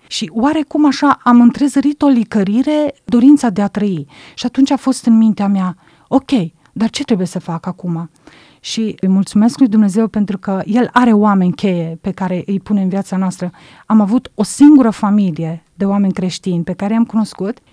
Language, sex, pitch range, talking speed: Romanian, female, 180-235 Hz, 185 wpm